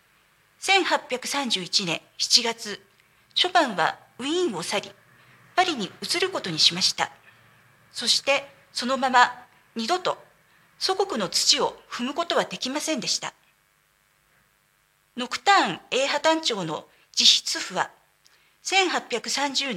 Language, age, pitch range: Japanese, 50-69, 220-340 Hz